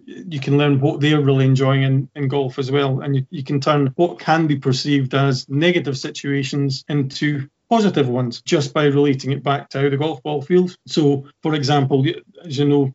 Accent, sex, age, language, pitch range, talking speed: British, male, 40-59, English, 135-165 Hz, 205 wpm